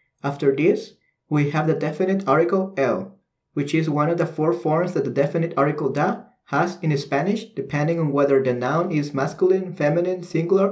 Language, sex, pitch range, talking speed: English, male, 140-185 Hz, 180 wpm